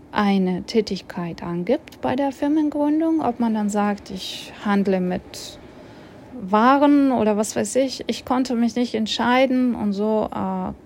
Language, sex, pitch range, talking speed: German, female, 195-235 Hz, 145 wpm